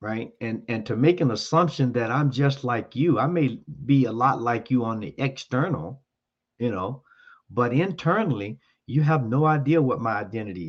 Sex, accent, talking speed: male, American, 185 wpm